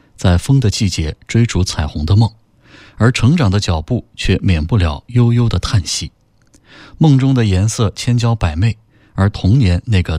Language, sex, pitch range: Chinese, male, 90-120 Hz